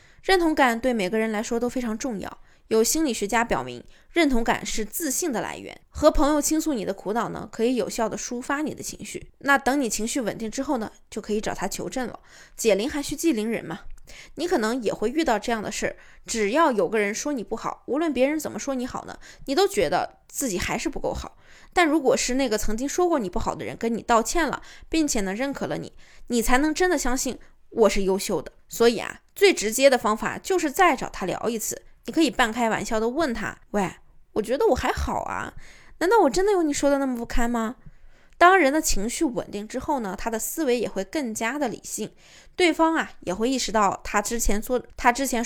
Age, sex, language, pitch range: 20-39, female, Chinese, 220-300 Hz